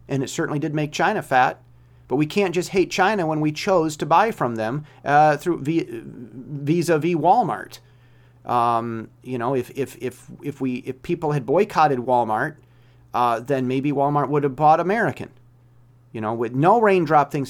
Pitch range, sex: 120-160 Hz, male